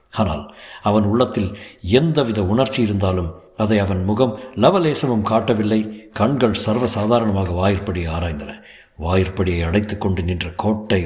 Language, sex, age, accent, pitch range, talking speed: Tamil, male, 60-79, native, 100-125 Hz, 110 wpm